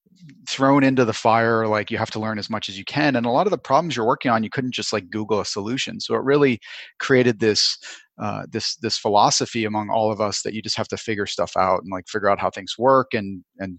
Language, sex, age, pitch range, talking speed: English, male, 30-49, 110-130 Hz, 260 wpm